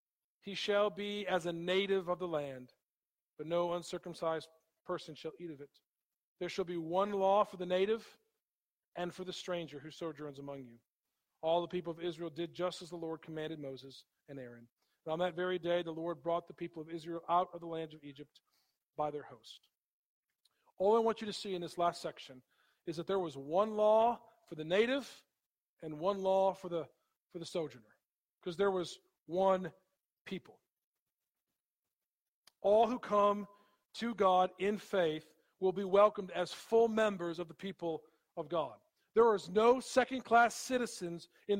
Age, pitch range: 40-59, 170-220 Hz